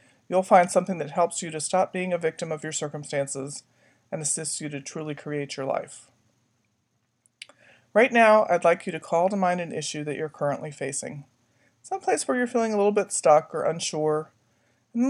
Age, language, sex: 40-59, English, male